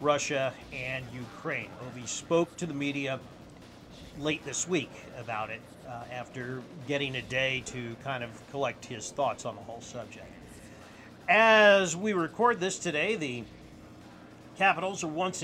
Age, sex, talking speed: 40-59, male, 145 wpm